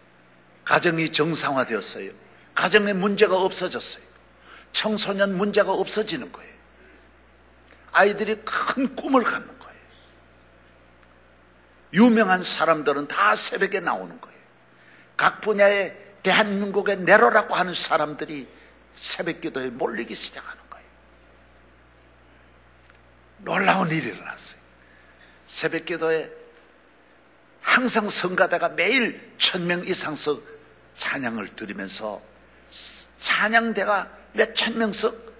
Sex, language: male, Korean